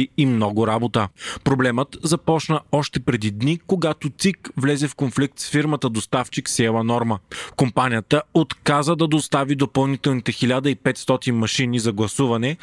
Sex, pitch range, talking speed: male, 125-150 Hz, 130 wpm